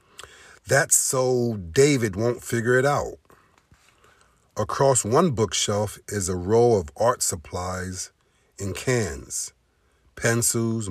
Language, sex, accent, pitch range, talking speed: English, male, American, 95-120 Hz, 105 wpm